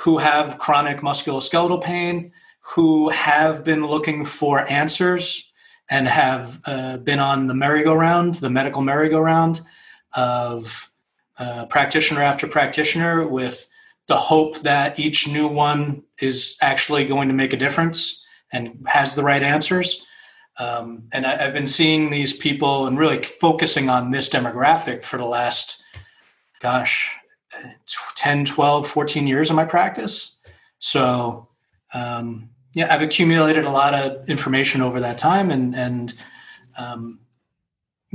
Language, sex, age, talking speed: English, male, 30-49, 130 wpm